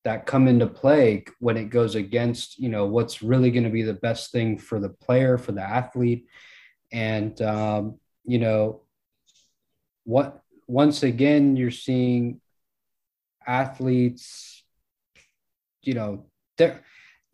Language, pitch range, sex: English, 110-130 Hz, male